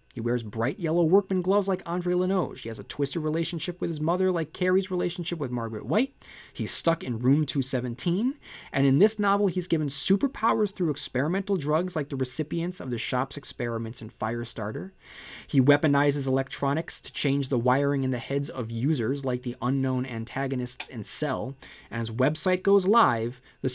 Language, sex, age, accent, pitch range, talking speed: English, male, 30-49, American, 120-160 Hz, 180 wpm